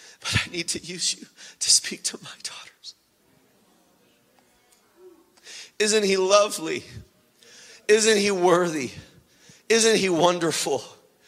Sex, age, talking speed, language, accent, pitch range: male, 40-59, 105 wpm, English, American, 145-180 Hz